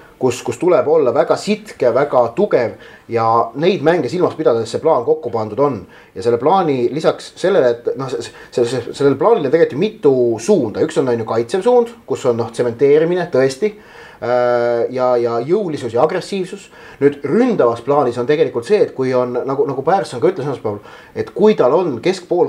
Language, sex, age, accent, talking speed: English, male, 30-49, Finnish, 175 wpm